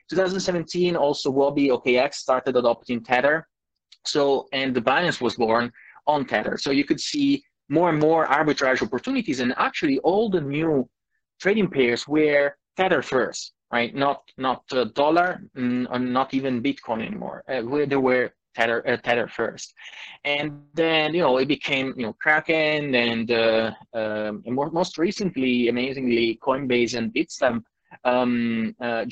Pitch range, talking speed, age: 125-155 Hz, 155 wpm, 20-39